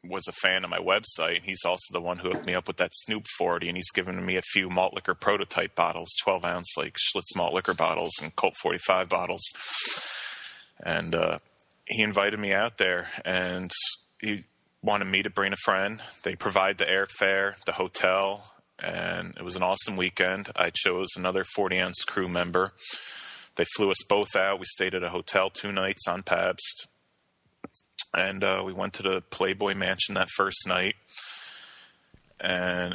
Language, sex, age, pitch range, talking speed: English, male, 30-49, 90-100 Hz, 180 wpm